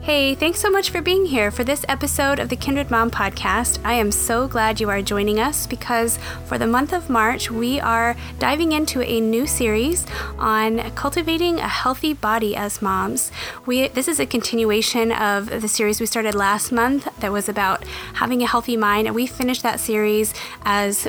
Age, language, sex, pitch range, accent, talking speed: 30-49, English, female, 210-255 Hz, American, 195 wpm